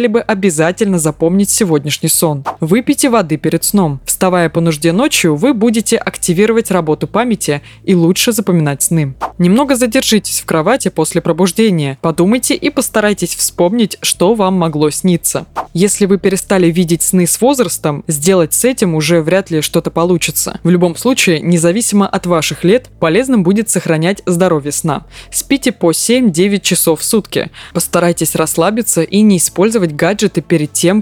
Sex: female